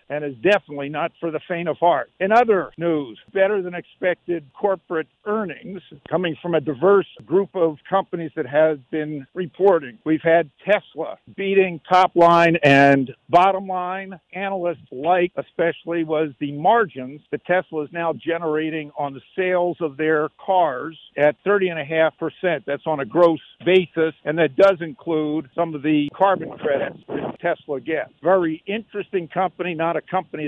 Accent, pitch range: American, 150-185 Hz